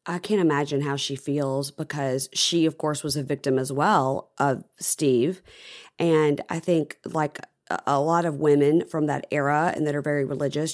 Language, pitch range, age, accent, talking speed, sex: English, 140-160 Hz, 40-59, American, 185 wpm, female